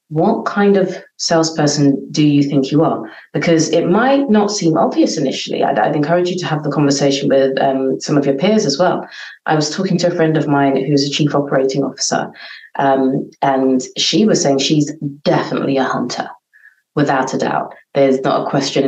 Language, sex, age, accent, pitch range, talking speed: English, female, 30-49, British, 135-175 Hz, 195 wpm